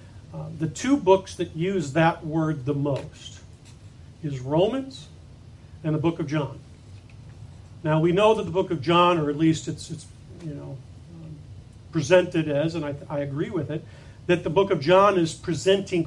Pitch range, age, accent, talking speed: 125-175 Hz, 40-59, American, 180 wpm